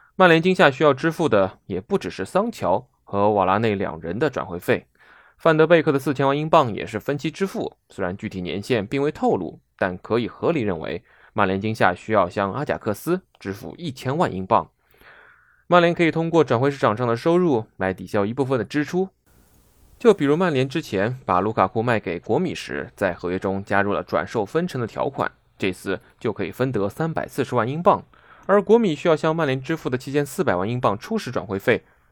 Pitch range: 105-165 Hz